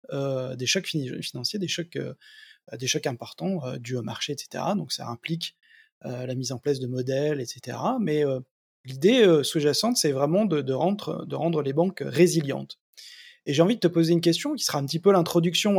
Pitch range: 140-200 Hz